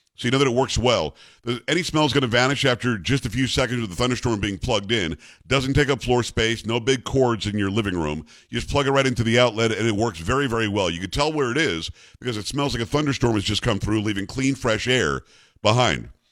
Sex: male